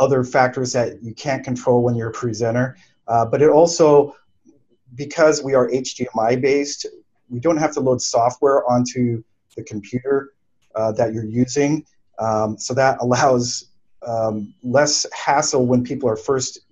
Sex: male